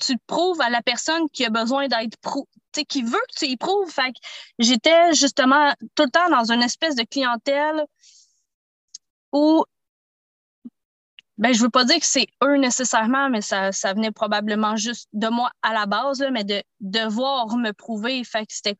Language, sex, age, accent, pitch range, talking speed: French, female, 20-39, Canadian, 225-280 Hz, 195 wpm